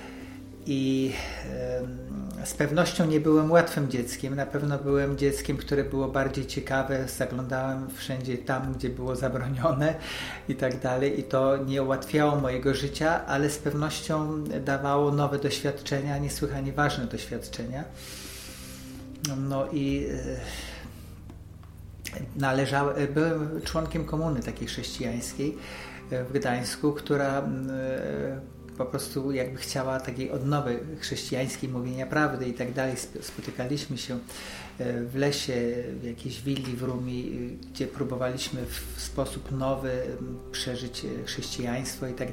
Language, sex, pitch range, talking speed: Polish, male, 125-140 Hz, 120 wpm